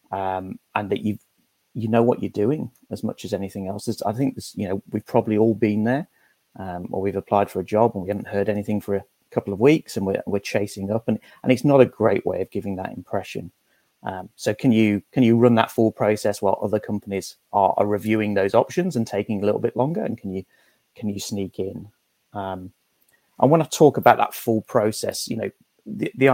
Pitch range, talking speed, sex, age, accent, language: 100-115 Hz, 230 wpm, male, 30-49, British, English